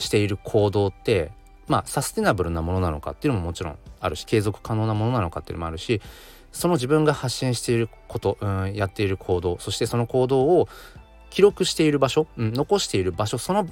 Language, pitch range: Japanese, 85-115 Hz